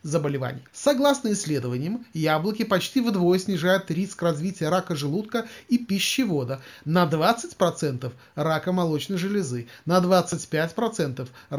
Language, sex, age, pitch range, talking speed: Russian, male, 30-49, 150-200 Hz, 100 wpm